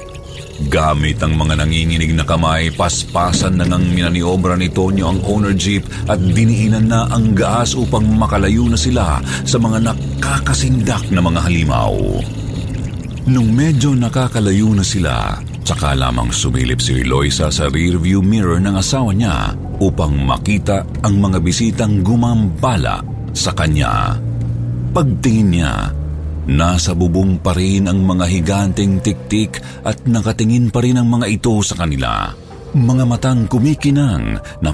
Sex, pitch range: male, 80-110 Hz